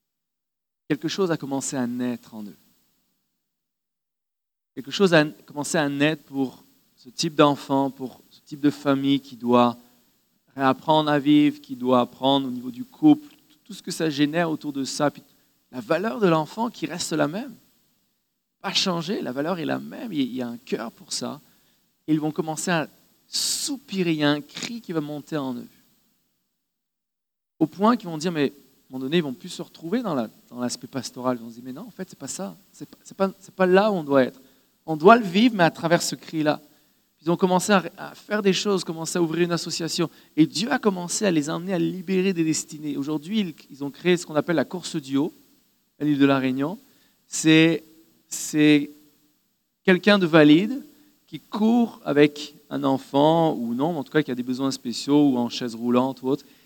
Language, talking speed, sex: French, 210 wpm, male